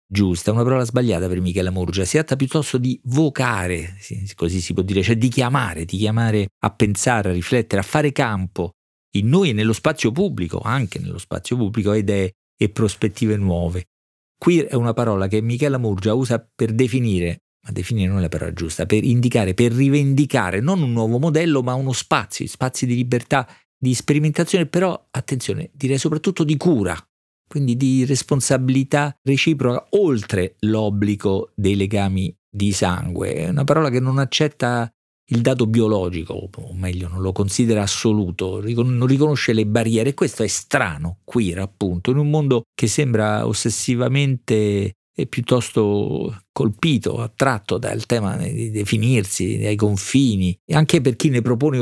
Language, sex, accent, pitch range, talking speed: Italian, male, native, 100-130 Hz, 160 wpm